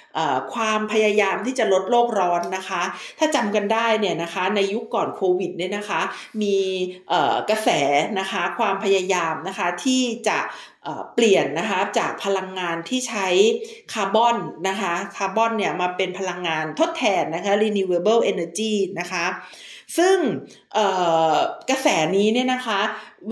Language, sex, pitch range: Thai, female, 195-250 Hz